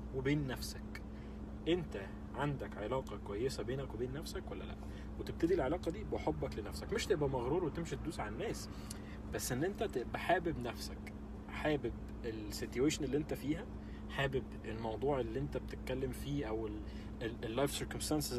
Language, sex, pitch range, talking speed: Arabic, male, 105-150 Hz, 145 wpm